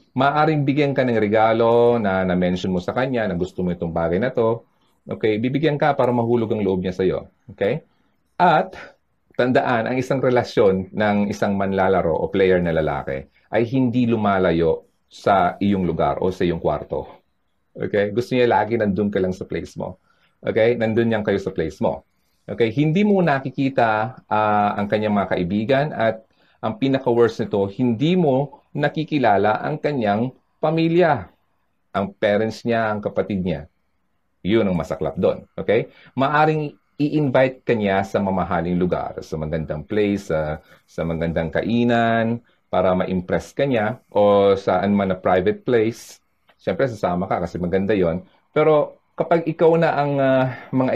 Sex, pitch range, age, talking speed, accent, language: male, 95-130 Hz, 40-59, 155 wpm, native, Filipino